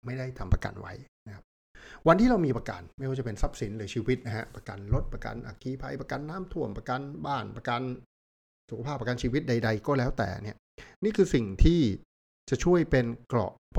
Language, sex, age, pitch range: Thai, male, 60-79, 110-140 Hz